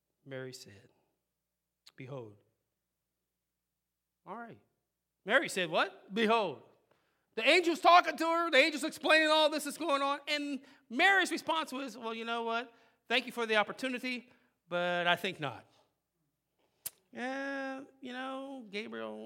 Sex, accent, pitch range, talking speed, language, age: male, American, 210-320 Hz, 135 wpm, English, 40-59